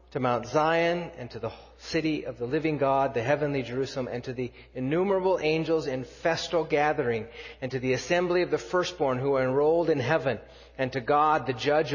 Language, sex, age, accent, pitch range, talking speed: English, male, 40-59, American, 120-160 Hz, 195 wpm